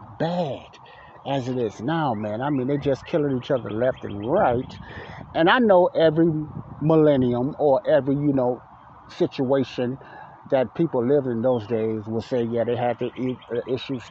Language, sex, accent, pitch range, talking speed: English, male, American, 115-140 Hz, 165 wpm